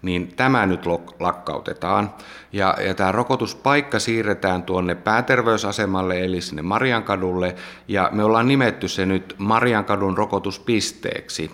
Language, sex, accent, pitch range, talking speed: Finnish, male, native, 85-105 Hz, 125 wpm